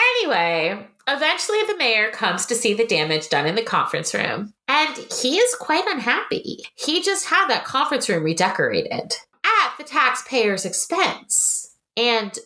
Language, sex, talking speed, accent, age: English, female, 150 wpm, American, 30-49